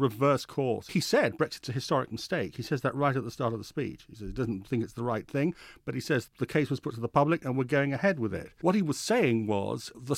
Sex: male